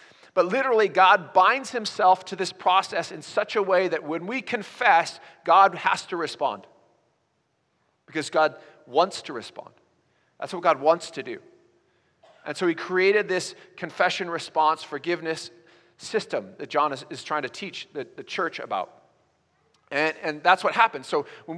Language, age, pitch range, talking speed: English, 40-59, 155-205 Hz, 160 wpm